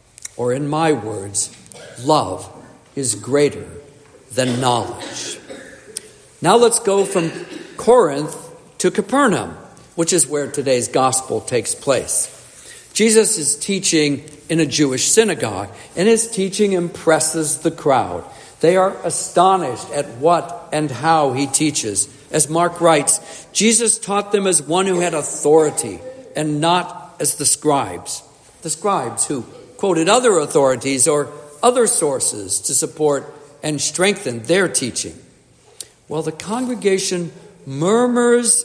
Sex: male